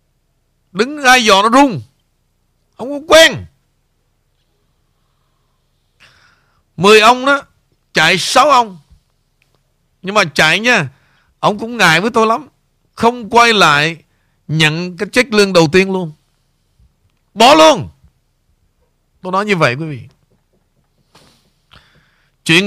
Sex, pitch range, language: male, 145-215 Hz, Vietnamese